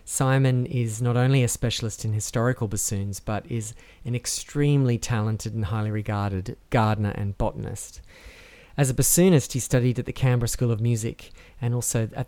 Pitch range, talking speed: 110-130 Hz, 165 wpm